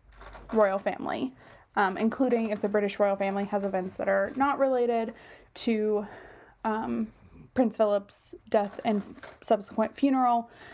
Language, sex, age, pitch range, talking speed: English, female, 20-39, 200-240 Hz, 130 wpm